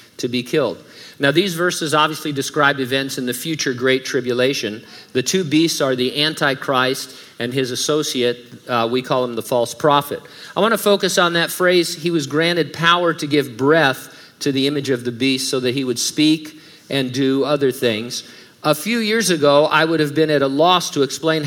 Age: 50-69